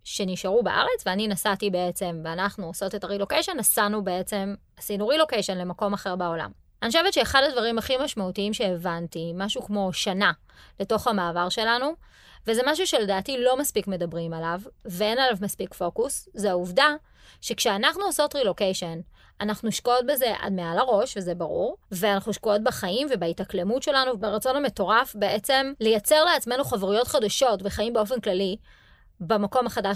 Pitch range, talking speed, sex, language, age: 195-265 Hz, 140 wpm, female, Hebrew, 20-39